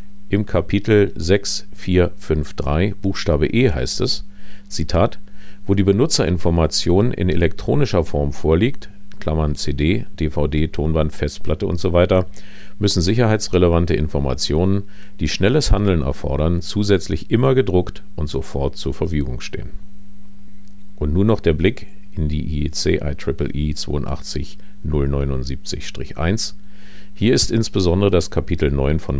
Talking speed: 115 wpm